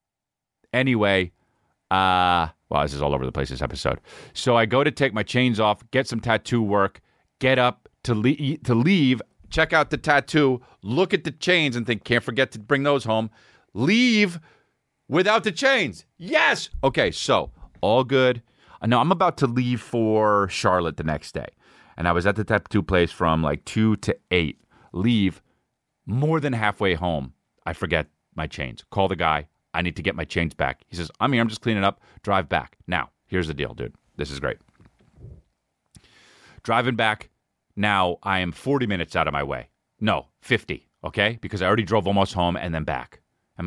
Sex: male